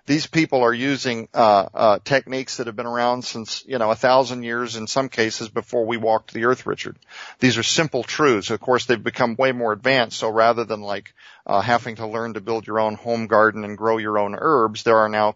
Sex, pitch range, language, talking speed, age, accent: male, 110-155 Hz, English, 230 wpm, 50-69, American